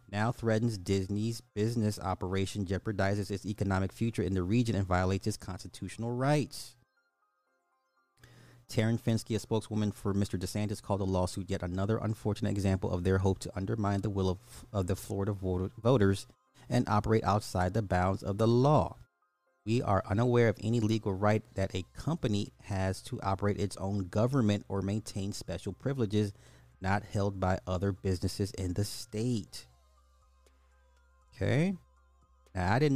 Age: 30-49